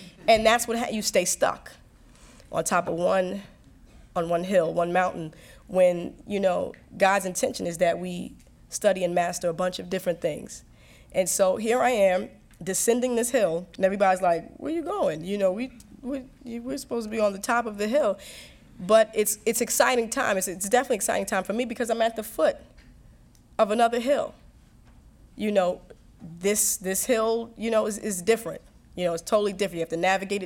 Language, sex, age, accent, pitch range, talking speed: English, female, 20-39, American, 185-230 Hz, 195 wpm